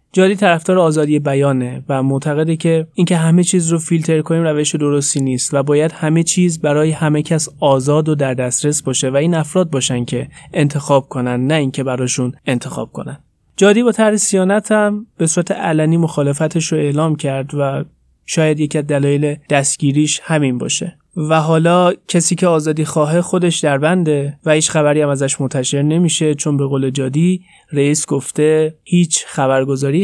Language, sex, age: Persian, male, 30-49